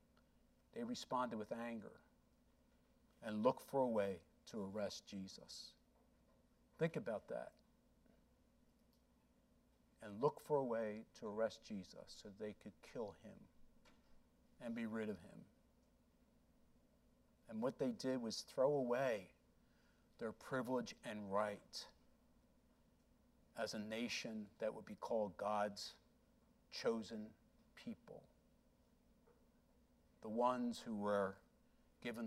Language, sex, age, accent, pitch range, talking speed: English, male, 50-69, American, 105-135 Hz, 110 wpm